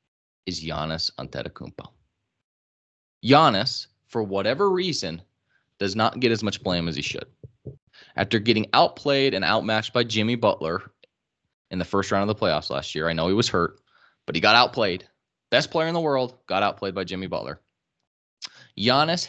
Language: English